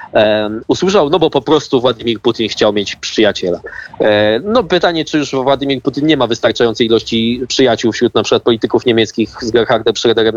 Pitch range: 120-165 Hz